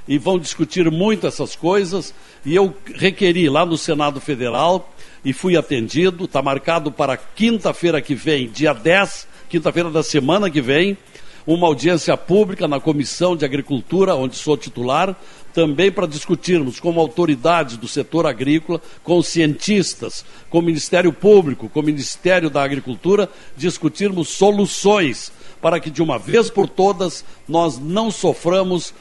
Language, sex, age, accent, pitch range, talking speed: Portuguese, male, 60-79, Brazilian, 145-180 Hz, 145 wpm